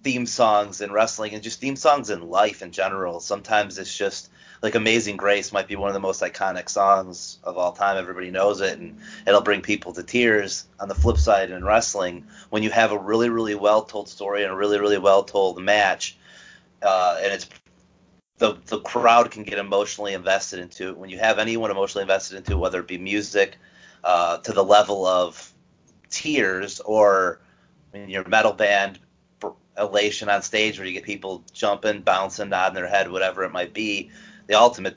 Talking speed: 190 wpm